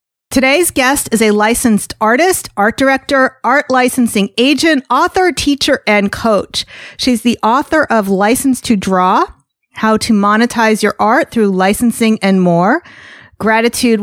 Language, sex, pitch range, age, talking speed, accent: English, female, 205-255 Hz, 40-59, 135 wpm, American